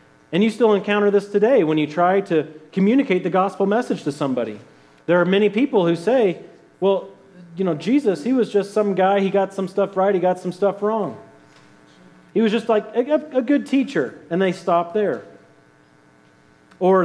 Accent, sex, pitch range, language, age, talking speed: American, male, 160-240 Hz, English, 30-49, 185 wpm